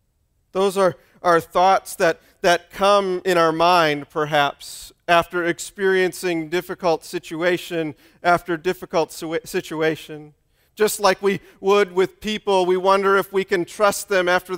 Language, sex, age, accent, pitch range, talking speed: English, male, 40-59, American, 160-200 Hz, 135 wpm